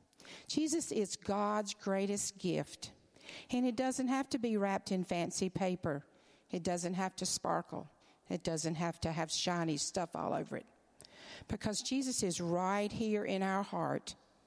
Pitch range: 180-235 Hz